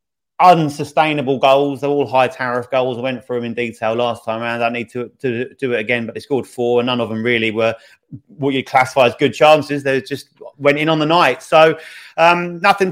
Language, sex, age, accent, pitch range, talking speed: English, male, 30-49, British, 130-155 Hz, 230 wpm